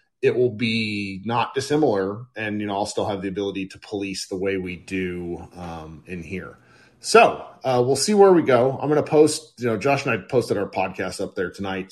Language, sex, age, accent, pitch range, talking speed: English, male, 30-49, American, 95-130 Hz, 220 wpm